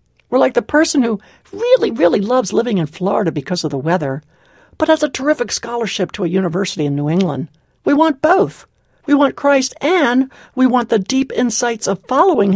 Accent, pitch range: American, 180-270 Hz